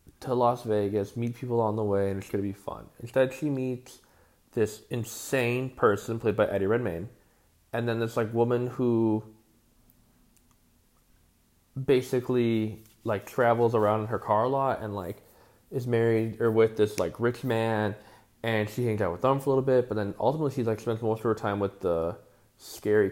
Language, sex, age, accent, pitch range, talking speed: English, male, 20-39, American, 105-135 Hz, 185 wpm